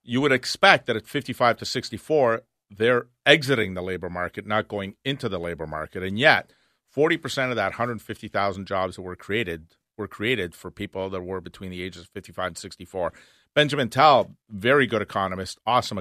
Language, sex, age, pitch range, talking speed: English, male, 40-59, 95-115 Hz, 180 wpm